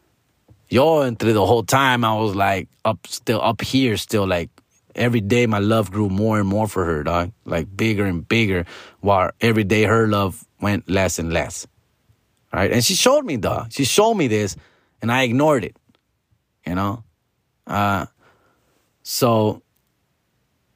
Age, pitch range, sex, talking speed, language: 30-49, 95-115 Hz, male, 165 wpm, English